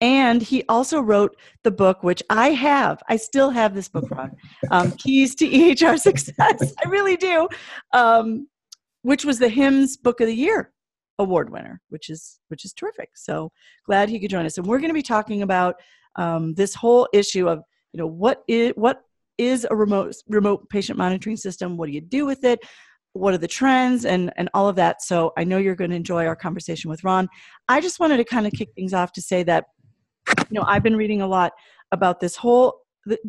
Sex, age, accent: female, 40-59, American